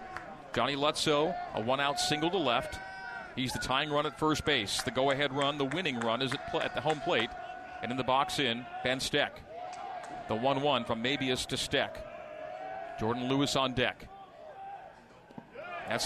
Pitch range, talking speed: 130-165 Hz, 170 wpm